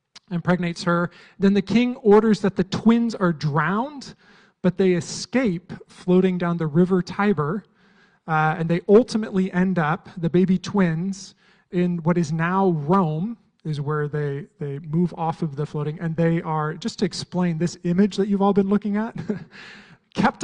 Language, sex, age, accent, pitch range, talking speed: English, male, 30-49, American, 165-205 Hz, 165 wpm